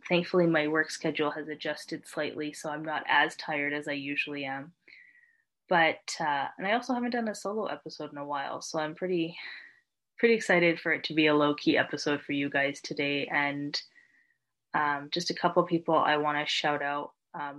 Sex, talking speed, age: female, 195 wpm, 20-39